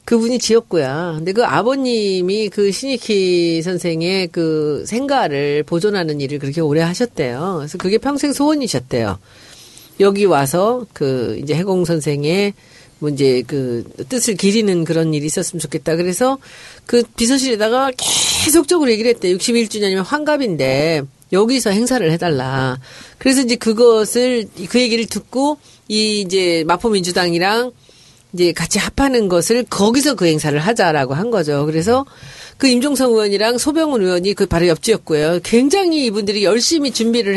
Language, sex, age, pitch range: Korean, female, 40-59, 160-245 Hz